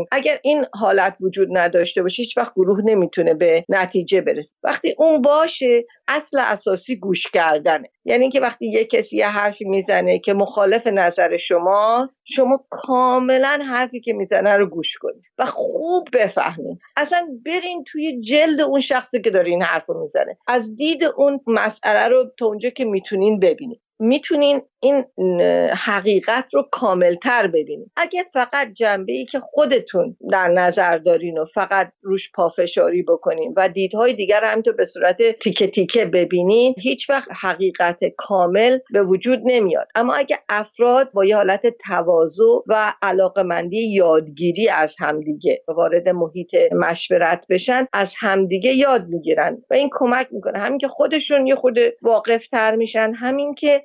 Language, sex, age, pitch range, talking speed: Persian, female, 50-69, 190-275 Hz, 145 wpm